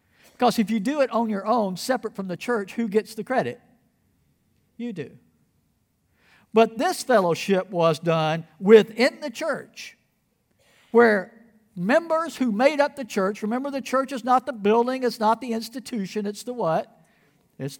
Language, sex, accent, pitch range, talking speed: English, male, American, 205-255 Hz, 160 wpm